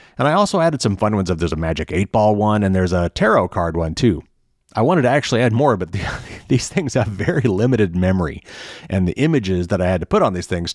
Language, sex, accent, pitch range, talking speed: English, male, American, 90-115 Hz, 255 wpm